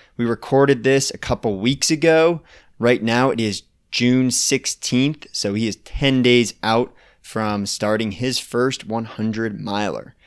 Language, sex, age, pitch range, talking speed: English, male, 30-49, 110-135 Hz, 145 wpm